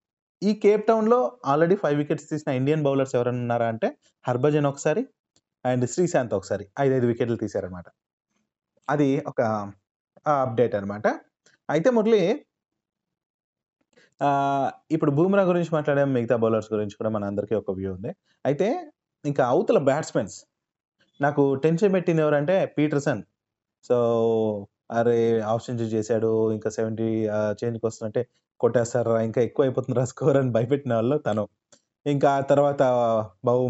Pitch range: 115-150 Hz